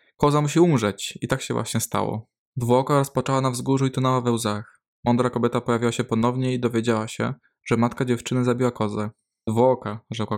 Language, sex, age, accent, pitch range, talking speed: Polish, male, 20-39, native, 110-130 Hz, 180 wpm